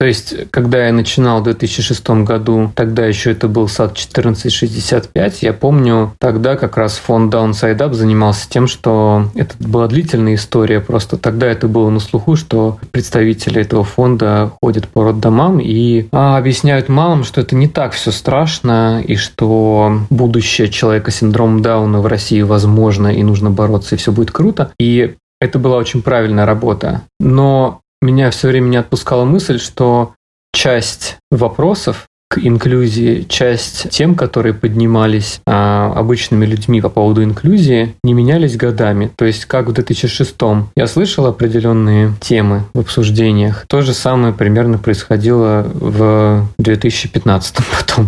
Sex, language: male, Russian